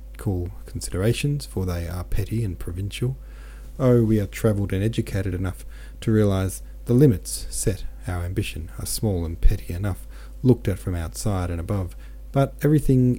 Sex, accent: male, Australian